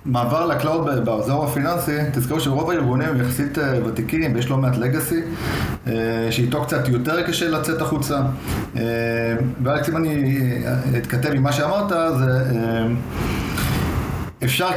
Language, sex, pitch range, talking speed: Hebrew, male, 120-145 Hz, 120 wpm